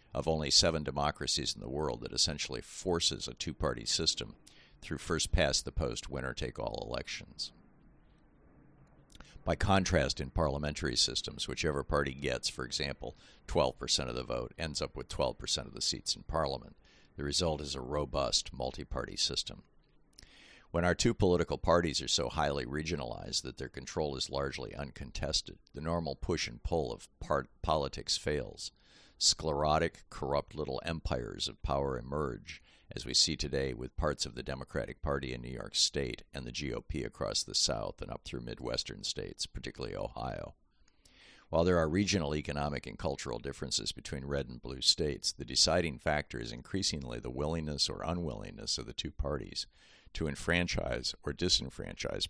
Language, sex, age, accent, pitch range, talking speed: English, male, 50-69, American, 65-80 Hz, 160 wpm